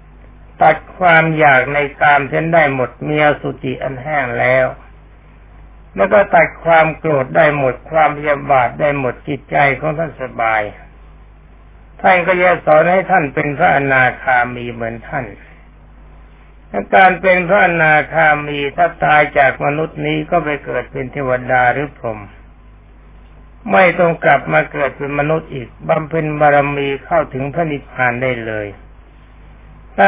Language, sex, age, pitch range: Thai, male, 60-79, 120-165 Hz